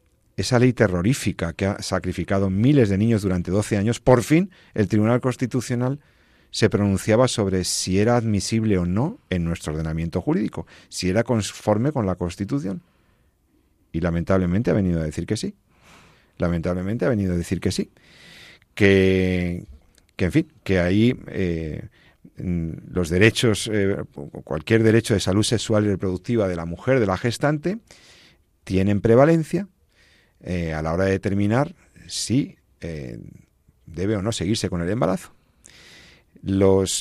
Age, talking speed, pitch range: 40-59, 150 wpm, 90-115 Hz